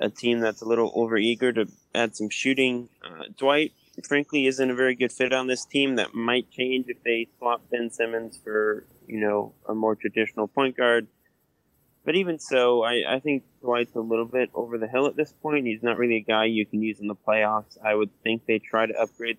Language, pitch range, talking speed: English, 110-130 Hz, 225 wpm